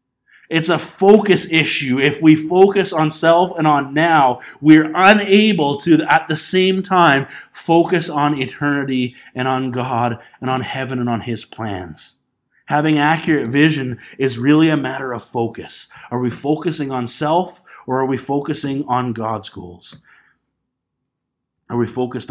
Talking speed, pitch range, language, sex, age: 150 wpm, 125-160 Hz, English, male, 30-49